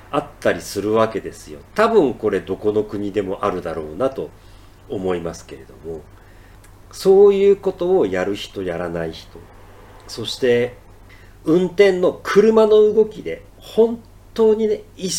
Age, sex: 50-69, male